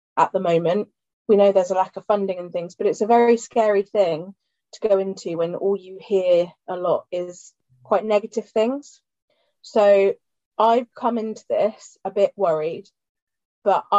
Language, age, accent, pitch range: English, 20-39, British, 190-225 Hz